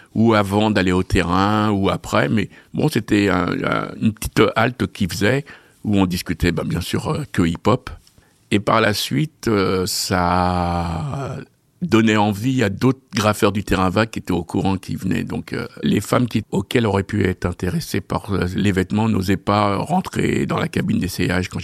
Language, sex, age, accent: French, male, 50-69, French